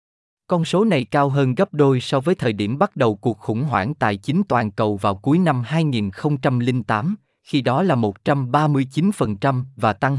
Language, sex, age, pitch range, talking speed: Vietnamese, male, 20-39, 110-160 Hz, 175 wpm